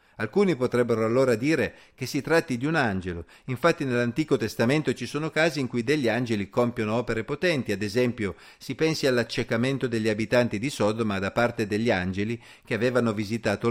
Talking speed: 170 wpm